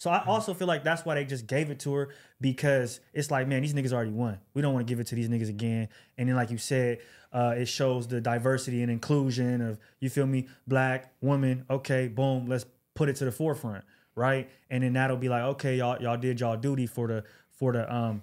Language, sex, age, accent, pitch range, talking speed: English, male, 20-39, American, 120-145 Hz, 245 wpm